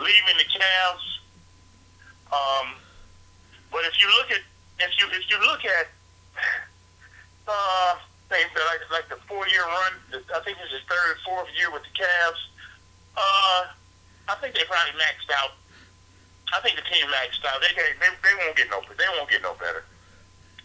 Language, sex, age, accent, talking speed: English, male, 50-69, American, 165 wpm